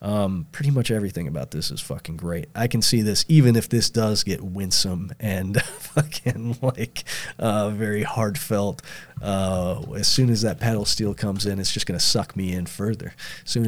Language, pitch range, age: English, 90-120 Hz, 30-49